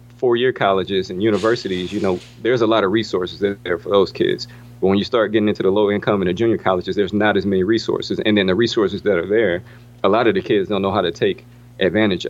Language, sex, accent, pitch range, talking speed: English, male, American, 100-120 Hz, 245 wpm